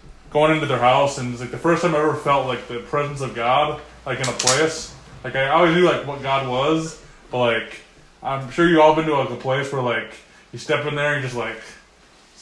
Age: 20-39